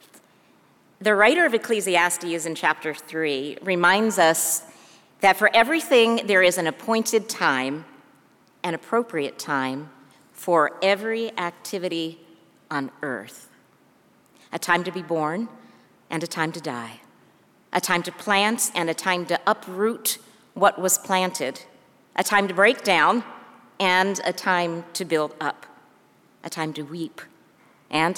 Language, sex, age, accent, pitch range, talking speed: English, female, 50-69, American, 160-210 Hz, 135 wpm